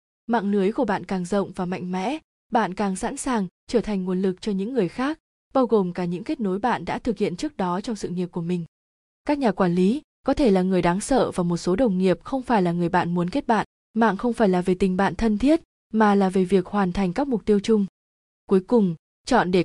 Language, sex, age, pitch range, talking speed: Vietnamese, female, 20-39, 185-230 Hz, 255 wpm